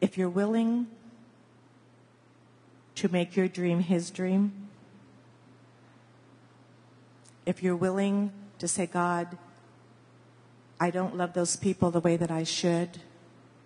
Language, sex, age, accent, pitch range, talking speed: English, female, 50-69, American, 135-175 Hz, 110 wpm